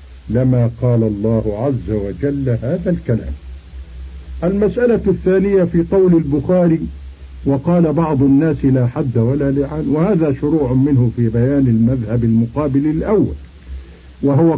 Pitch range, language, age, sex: 110-145 Hz, Arabic, 50-69, male